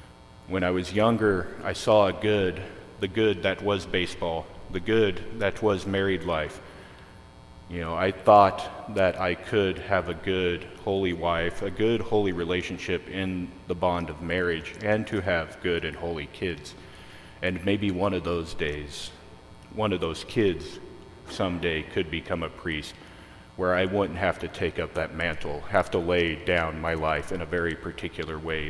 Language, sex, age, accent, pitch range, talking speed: English, male, 40-59, American, 80-95 Hz, 170 wpm